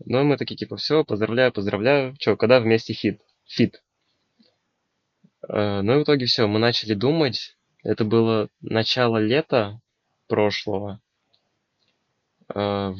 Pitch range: 105-120 Hz